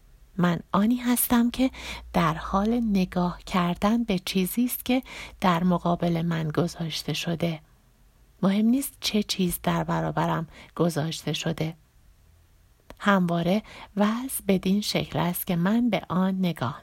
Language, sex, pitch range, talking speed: Persian, female, 170-205 Hz, 125 wpm